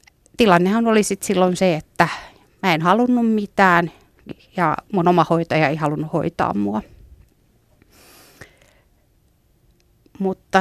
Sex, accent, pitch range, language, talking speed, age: female, native, 165-205 Hz, Finnish, 105 wpm, 30-49